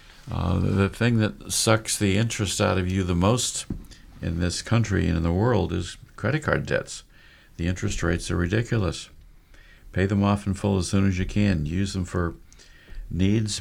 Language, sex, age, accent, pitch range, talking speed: English, male, 50-69, American, 85-105 Hz, 185 wpm